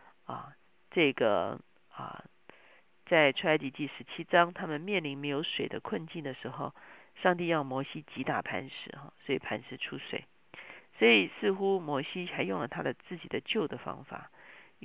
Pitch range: 140-185 Hz